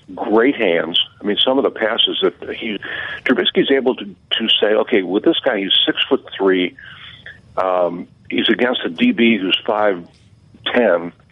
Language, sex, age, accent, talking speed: English, male, 50-69, American, 165 wpm